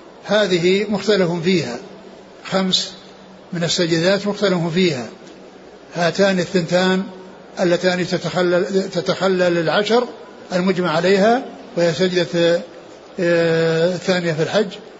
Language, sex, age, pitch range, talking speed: Arabic, male, 60-79, 175-205 Hz, 85 wpm